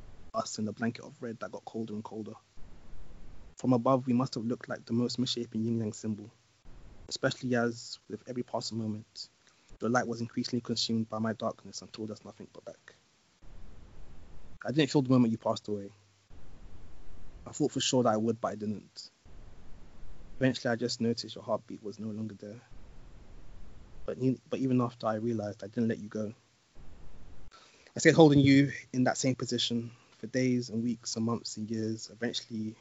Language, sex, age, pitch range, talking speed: English, male, 20-39, 105-120 Hz, 185 wpm